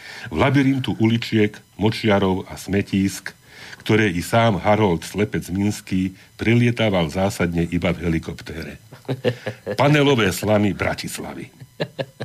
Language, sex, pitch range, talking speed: Slovak, male, 90-110 Hz, 95 wpm